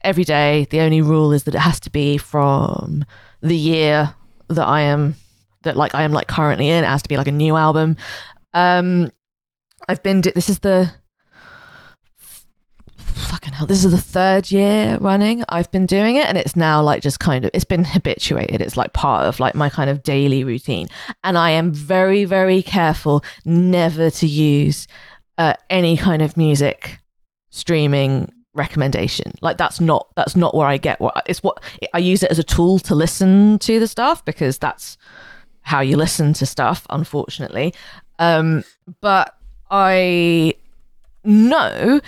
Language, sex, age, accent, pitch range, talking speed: English, female, 20-39, British, 150-190 Hz, 175 wpm